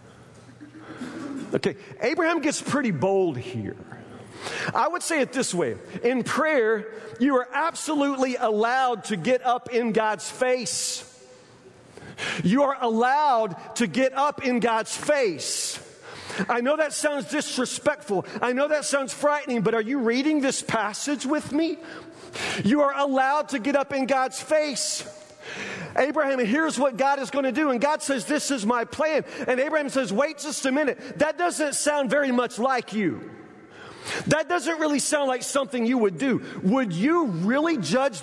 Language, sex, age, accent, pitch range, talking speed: English, male, 40-59, American, 235-295 Hz, 160 wpm